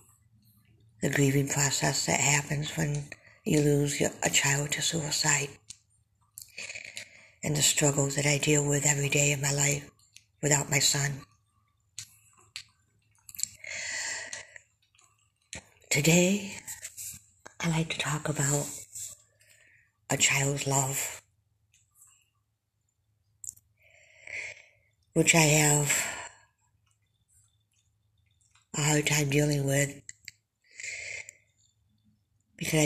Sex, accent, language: female, American, English